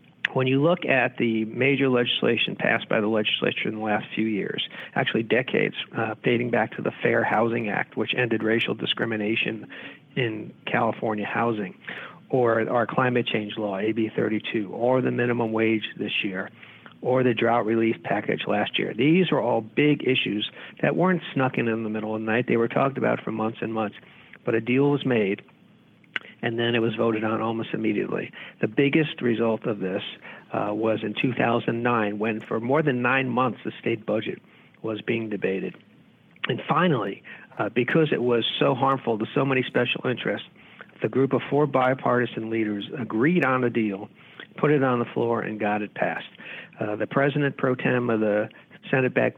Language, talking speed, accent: English, 185 wpm, American